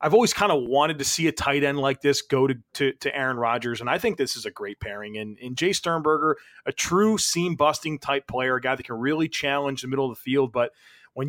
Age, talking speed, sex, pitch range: 30-49, 255 wpm, male, 130-160 Hz